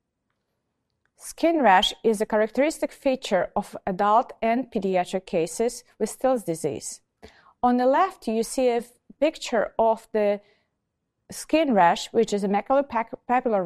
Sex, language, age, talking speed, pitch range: female, English, 40-59, 125 wpm, 195-245 Hz